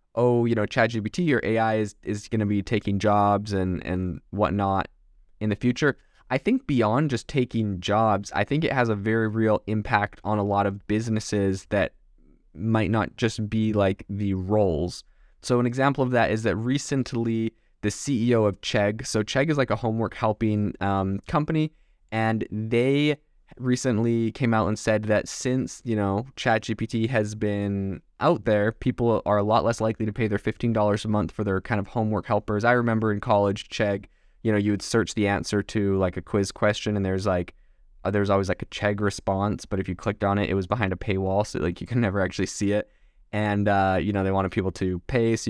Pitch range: 100-115 Hz